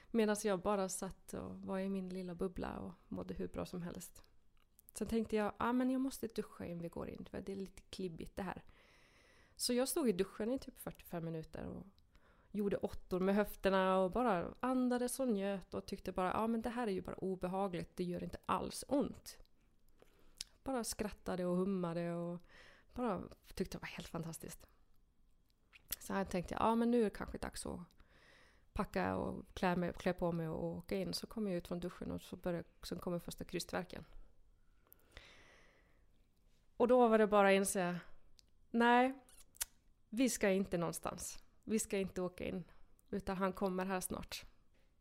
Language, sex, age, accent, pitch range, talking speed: English, female, 30-49, Swedish, 170-220 Hz, 175 wpm